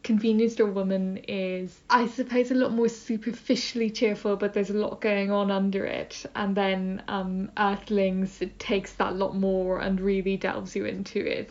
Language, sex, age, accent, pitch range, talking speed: English, female, 10-29, British, 190-205 Hz, 190 wpm